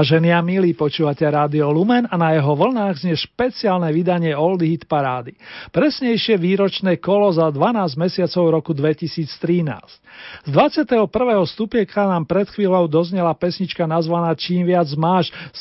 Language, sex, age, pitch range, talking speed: Slovak, male, 40-59, 155-200 Hz, 140 wpm